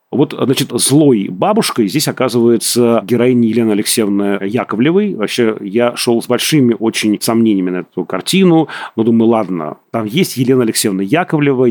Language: Russian